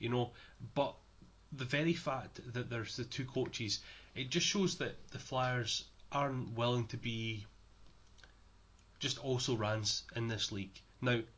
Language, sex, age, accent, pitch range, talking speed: English, male, 30-49, British, 95-125 Hz, 150 wpm